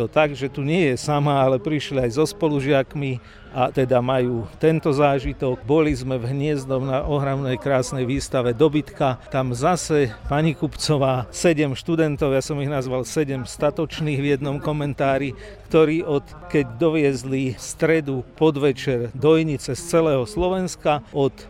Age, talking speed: 50-69, 140 wpm